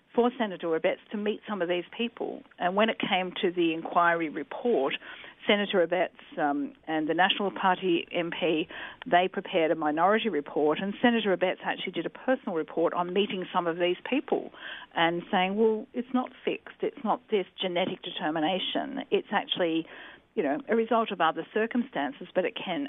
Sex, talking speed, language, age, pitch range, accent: female, 175 wpm, English, 50-69, 175-240 Hz, Australian